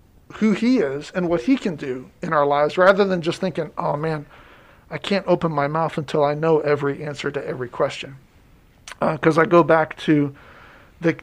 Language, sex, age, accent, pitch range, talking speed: English, male, 40-59, American, 150-205 Hz, 200 wpm